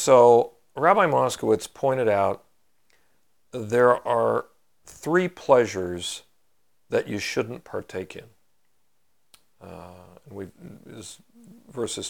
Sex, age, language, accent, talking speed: male, 50-69, English, American, 95 wpm